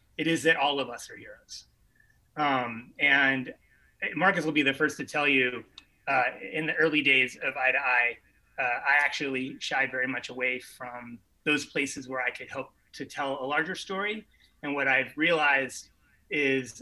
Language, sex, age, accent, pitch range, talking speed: English, male, 30-49, American, 130-160 Hz, 180 wpm